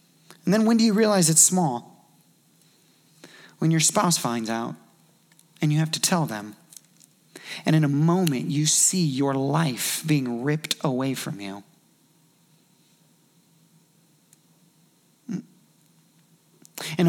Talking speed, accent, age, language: 115 wpm, American, 30-49, English